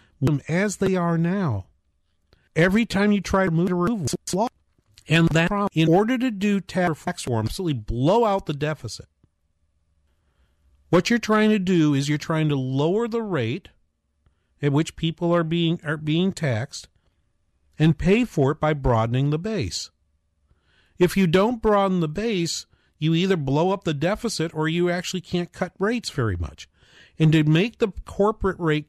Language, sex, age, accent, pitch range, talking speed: English, male, 50-69, American, 115-180 Hz, 170 wpm